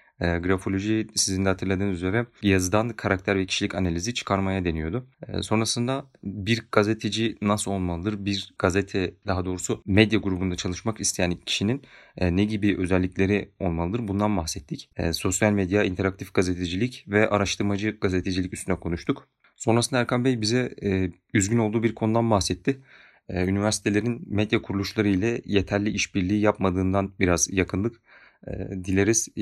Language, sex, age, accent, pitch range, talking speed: Turkish, male, 30-49, native, 95-110 Hz, 120 wpm